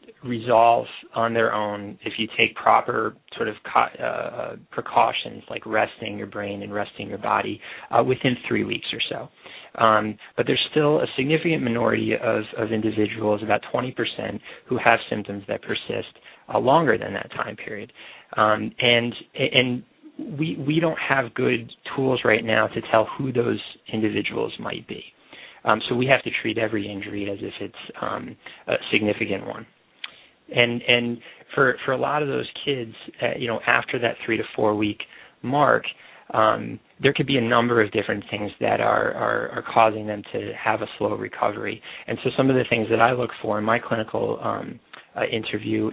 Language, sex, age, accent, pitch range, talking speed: English, male, 30-49, American, 105-120 Hz, 180 wpm